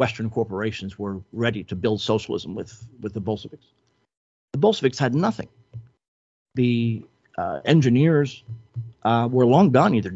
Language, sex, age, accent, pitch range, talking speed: English, male, 50-69, American, 110-130 Hz, 135 wpm